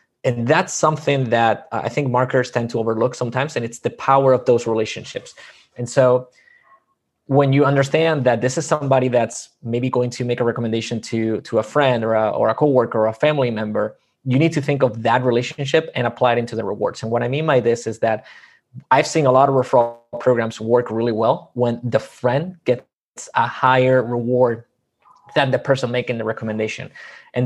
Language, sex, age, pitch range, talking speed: English, male, 20-39, 115-135 Hz, 200 wpm